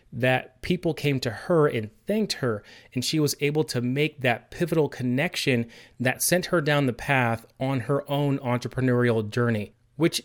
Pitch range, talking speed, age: 120-160 Hz, 170 wpm, 30-49